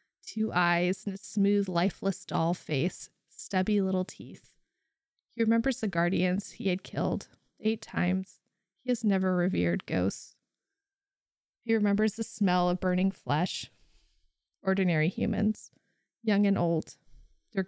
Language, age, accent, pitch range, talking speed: English, 20-39, American, 180-205 Hz, 130 wpm